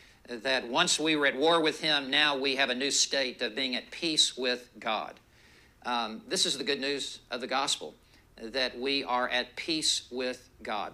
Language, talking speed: English, 195 wpm